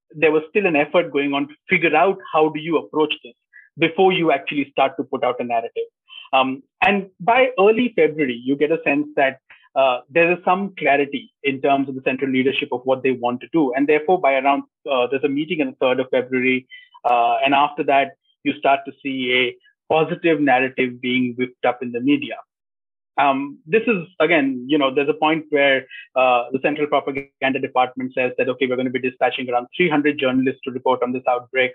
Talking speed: 210 wpm